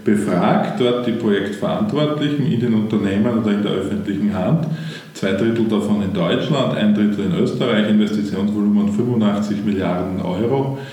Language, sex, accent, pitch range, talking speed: German, male, Austrian, 100-125 Hz, 135 wpm